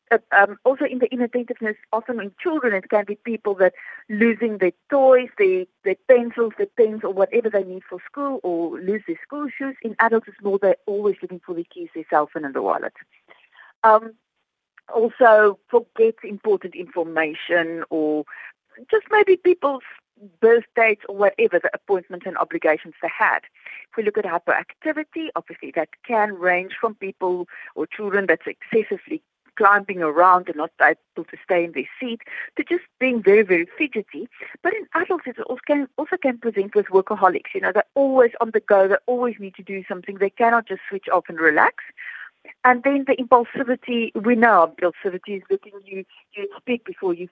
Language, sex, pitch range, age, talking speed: English, female, 190-255 Hz, 50-69, 180 wpm